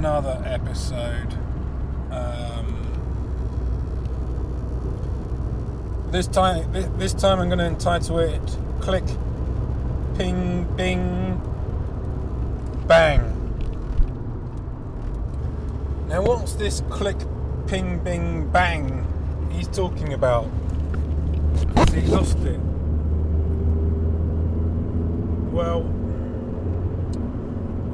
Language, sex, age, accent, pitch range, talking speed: English, male, 30-49, British, 70-85 Hz, 65 wpm